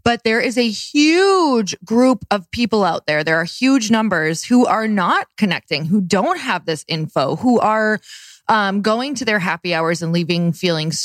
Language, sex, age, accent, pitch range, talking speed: English, female, 20-39, American, 175-220 Hz, 185 wpm